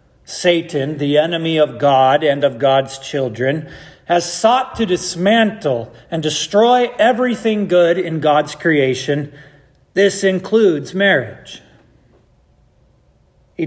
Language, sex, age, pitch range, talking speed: English, male, 40-59, 150-200 Hz, 105 wpm